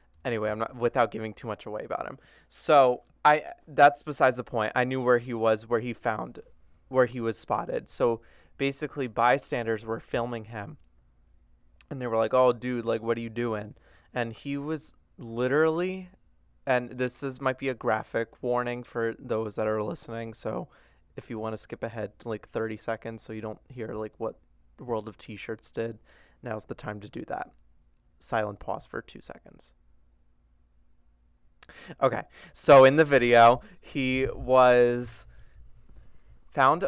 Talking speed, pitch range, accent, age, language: 165 wpm, 110-130 Hz, American, 20-39, English